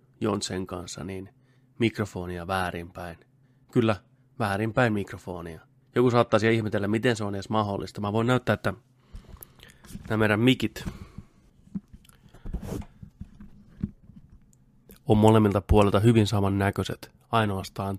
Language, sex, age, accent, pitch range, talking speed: Finnish, male, 30-49, native, 100-120 Hz, 100 wpm